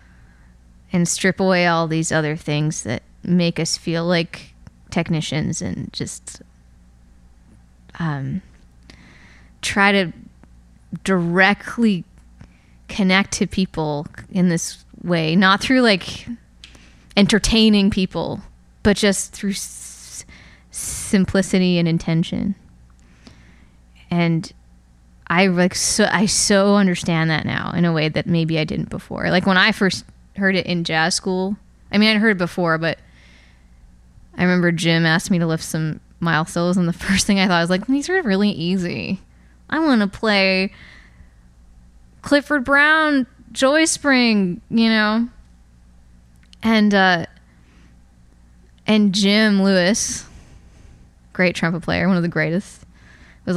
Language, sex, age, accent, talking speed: English, female, 20-39, American, 125 wpm